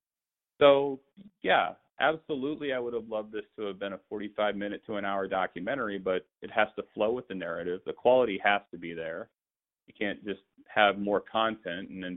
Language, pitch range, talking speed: English, 90-105 Hz, 190 wpm